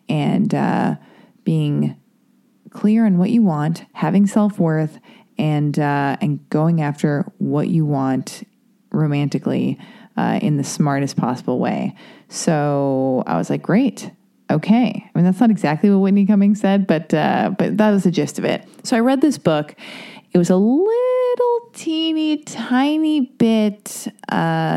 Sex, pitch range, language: female, 160-220 Hz, English